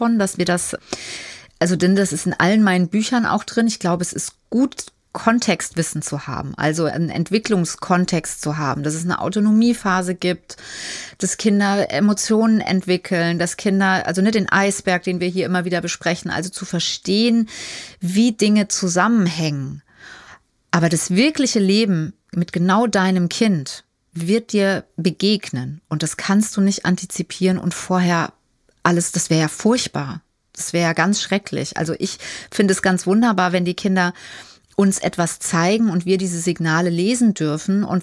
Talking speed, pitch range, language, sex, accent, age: 160 wpm, 175-210 Hz, German, female, German, 30-49